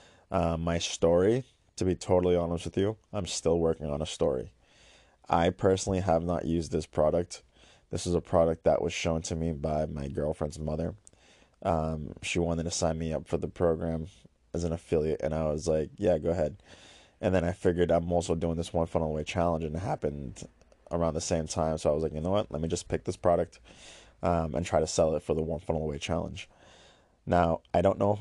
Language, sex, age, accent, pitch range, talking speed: English, male, 20-39, American, 80-90 Hz, 220 wpm